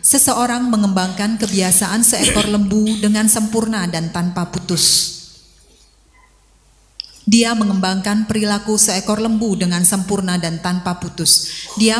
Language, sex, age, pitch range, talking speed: Indonesian, female, 30-49, 185-215 Hz, 105 wpm